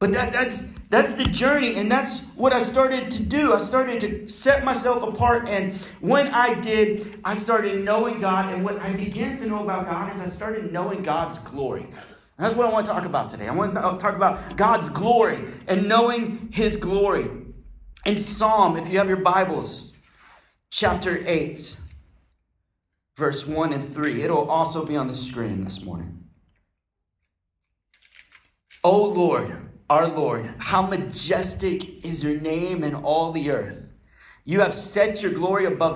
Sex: male